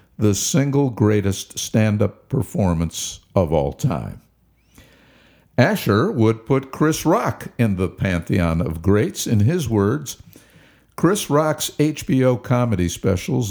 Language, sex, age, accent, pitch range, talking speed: English, male, 50-69, American, 95-135 Hz, 115 wpm